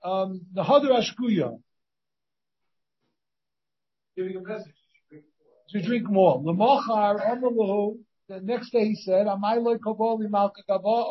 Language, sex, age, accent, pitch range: English, male, 50-69, American, 185-225 Hz